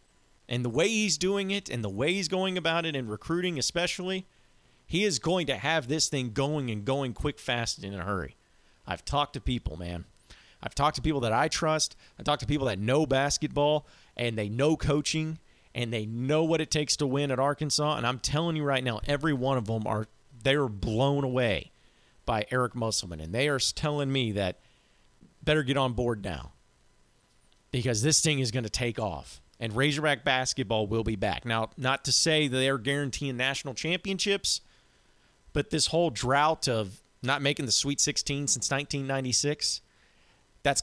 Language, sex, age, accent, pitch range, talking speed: English, male, 40-59, American, 115-150 Hz, 190 wpm